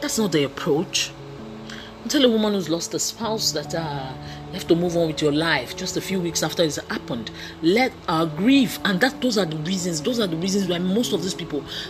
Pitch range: 135-200 Hz